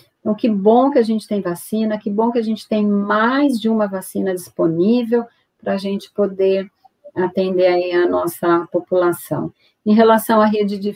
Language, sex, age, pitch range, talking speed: Portuguese, female, 40-59, 175-205 Hz, 180 wpm